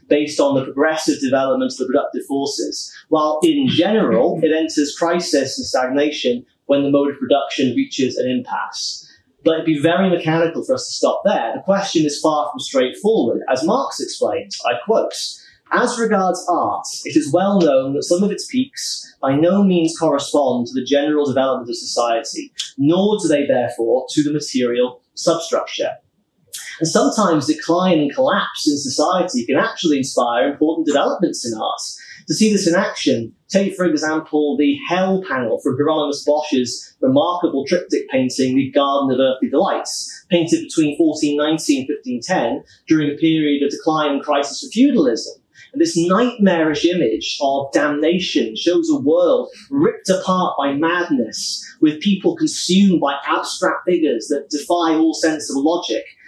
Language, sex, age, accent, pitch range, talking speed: English, male, 30-49, British, 145-210 Hz, 160 wpm